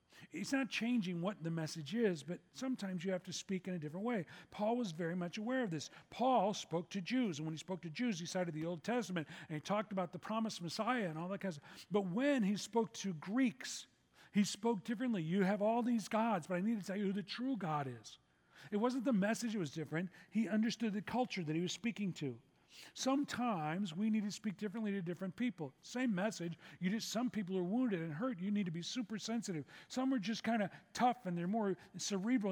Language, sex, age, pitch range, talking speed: English, male, 40-59, 170-225 Hz, 235 wpm